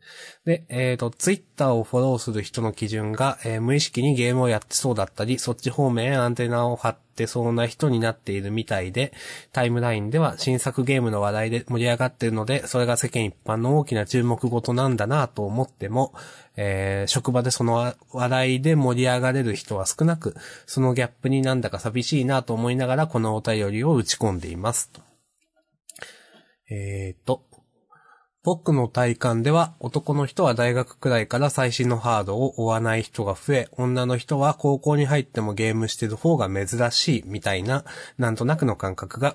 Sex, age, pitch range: male, 20-39, 110-135 Hz